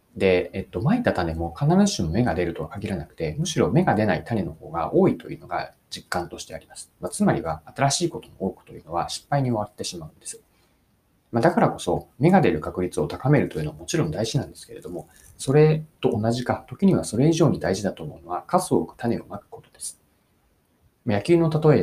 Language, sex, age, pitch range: Japanese, male, 30-49, 95-145 Hz